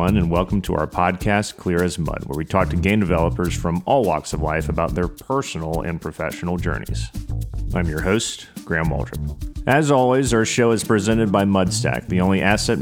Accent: American